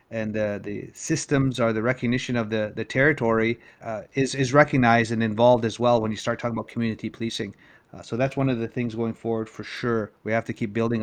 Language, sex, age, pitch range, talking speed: English, male, 30-49, 115-130 Hz, 235 wpm